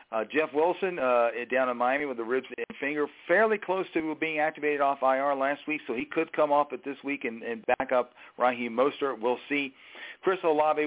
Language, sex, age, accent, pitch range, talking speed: English, male, 50-69, American, 115-140 Hz, 215 wpm